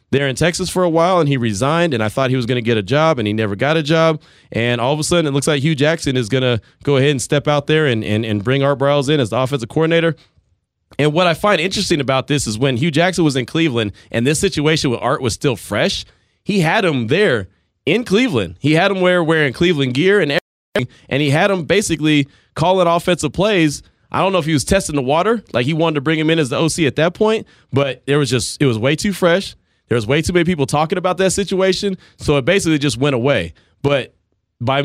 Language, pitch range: English, 120-165 Hz